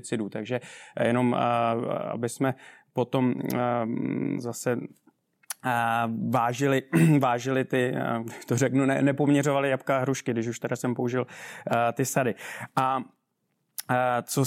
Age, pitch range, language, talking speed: 20-39, 125-145 Hz, Czech, 100 wpm